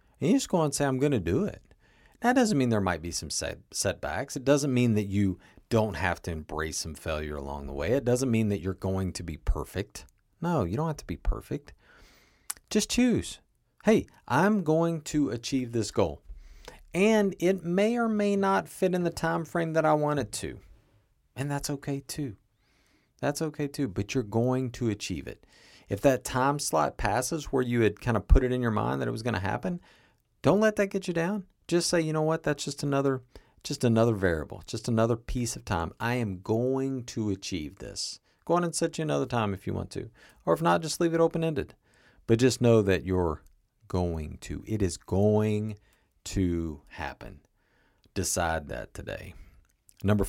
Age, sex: 40-59, male